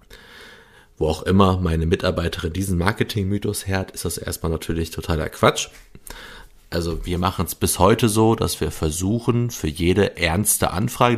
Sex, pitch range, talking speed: male, 85-105 Hz, 155 wpm